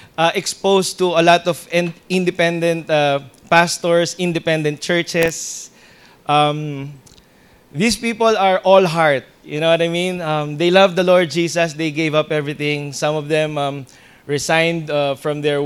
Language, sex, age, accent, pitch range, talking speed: English, male, 20-39, Filipino, 150-180 Hz, 155 wpm